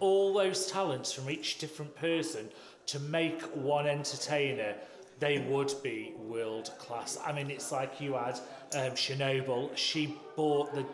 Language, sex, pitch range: English, male, 140-195 Hz